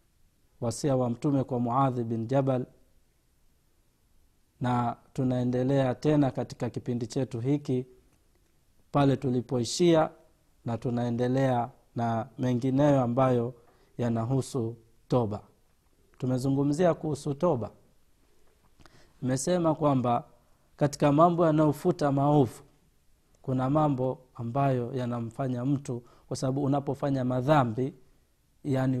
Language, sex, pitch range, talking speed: Swahili, male, 120-150 Hz, 85 wpm